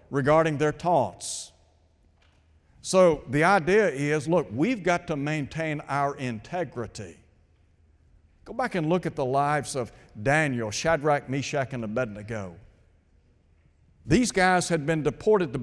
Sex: male